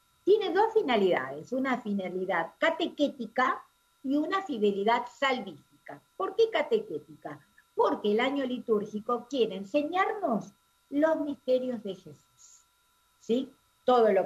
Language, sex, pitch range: Spanish, female, 190-275 Hz